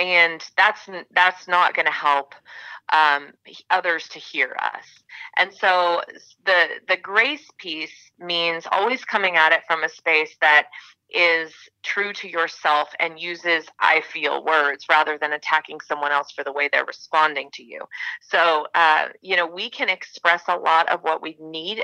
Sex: female